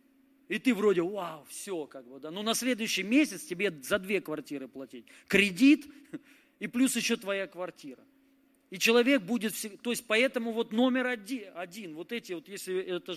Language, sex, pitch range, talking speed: Russian, male, 190-270 Hz, 170 wpm